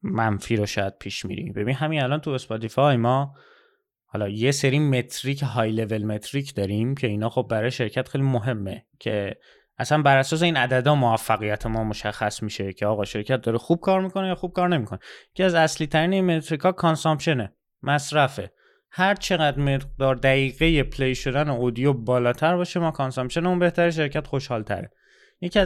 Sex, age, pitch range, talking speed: male, 20-39, 120-160 Hz, 160 wpm